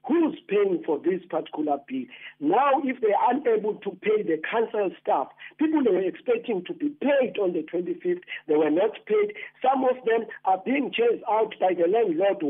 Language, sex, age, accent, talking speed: English, male, 50-69, South African, 185 wpm